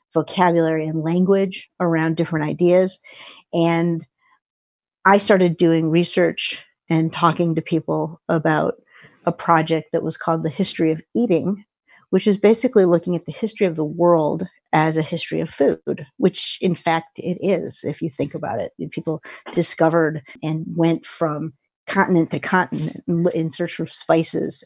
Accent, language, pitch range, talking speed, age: American, English, 160-180 Hz, 150 wpm, 50-69